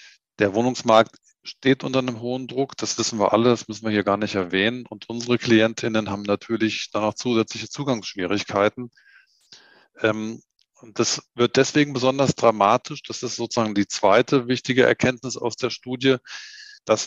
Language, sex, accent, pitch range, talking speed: German, male, German, 115-140 Hz, 150 wpm